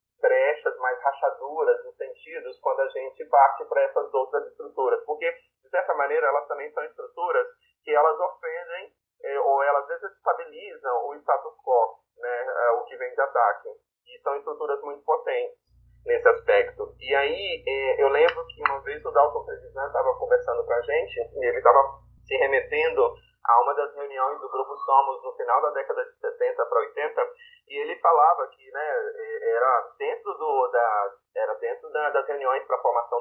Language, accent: Portuguese, Brazilian